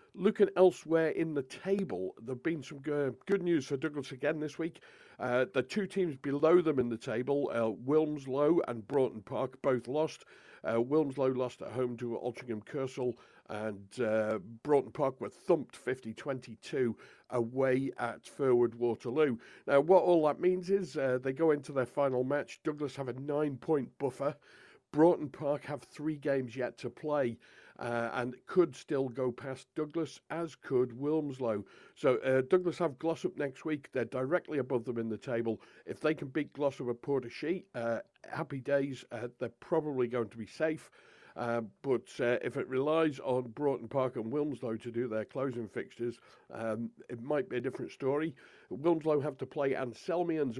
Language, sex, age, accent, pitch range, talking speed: English, male, 50-69, British, 125-155 Hz, 170 wpm